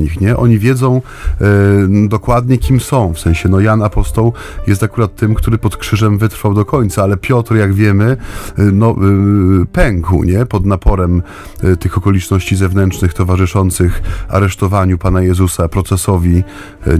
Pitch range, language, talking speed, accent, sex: 95-115 Hz, Polish, 150 wpm, native, male